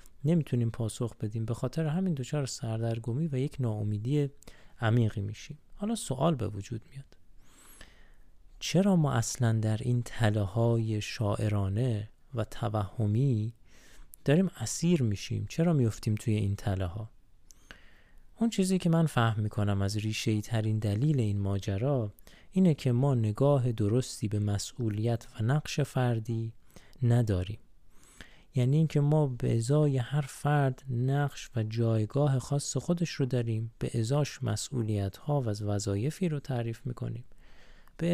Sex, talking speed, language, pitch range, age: male, 130 wpm, Persian, 110-150 Hz, 30-49